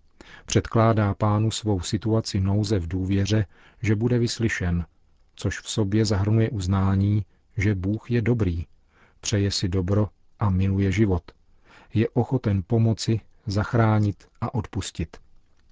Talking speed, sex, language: 120 wpm, male, Czech